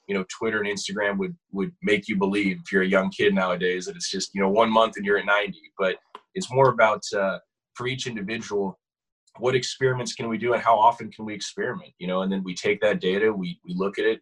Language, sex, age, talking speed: English, male, 20-39, 250 wpm